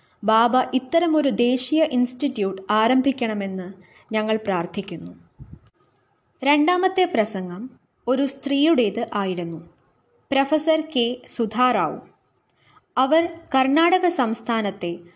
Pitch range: 200-275 Hz